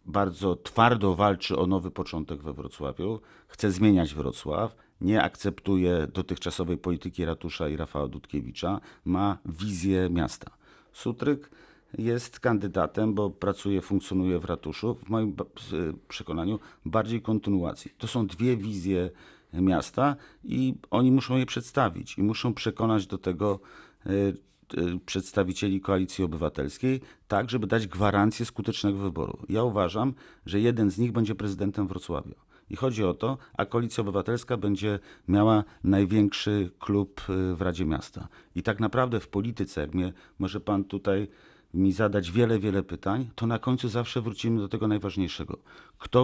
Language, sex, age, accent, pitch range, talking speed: Polish, male, 50-69, native, 90-110 Hz, 135 wpm